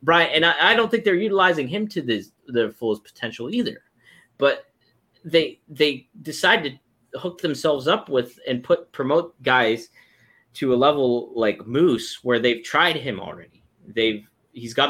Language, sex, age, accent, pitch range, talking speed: English, male, 30-49, American, 115-160 Hz, 165 wpm